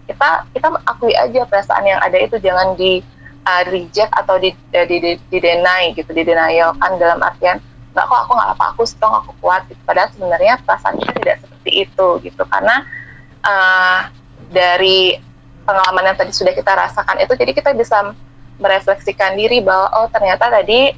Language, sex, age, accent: Indonesian, female, 20-39, native